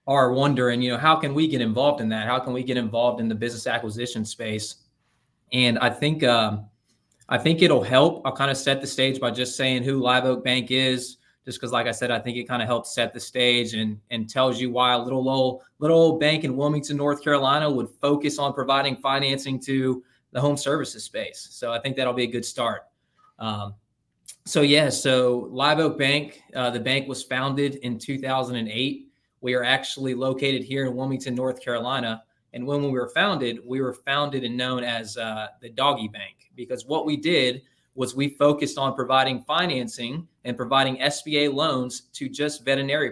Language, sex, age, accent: English, male, 20-39, American